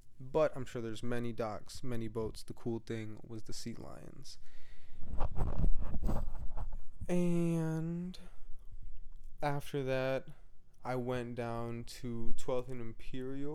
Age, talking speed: 20-39, 110 wpm